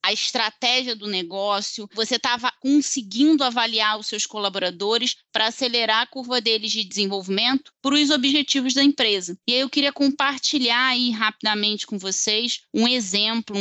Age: 20-39